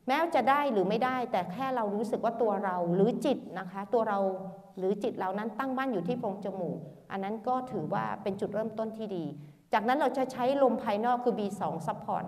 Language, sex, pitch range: Thai, female, 180-230 Hz